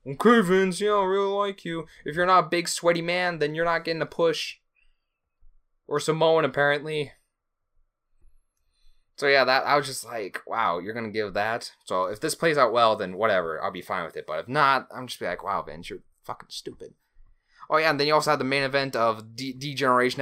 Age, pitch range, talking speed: 20-39, 115-155 Hz, 215 wpm